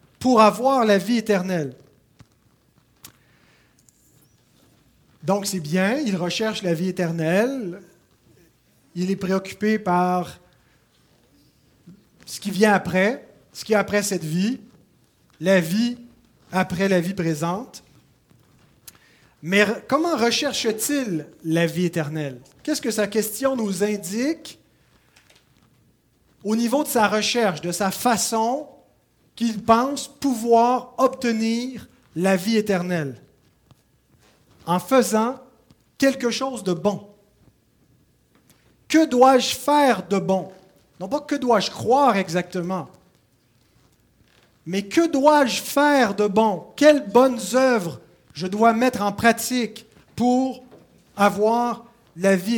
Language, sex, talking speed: French, male, 110 wpm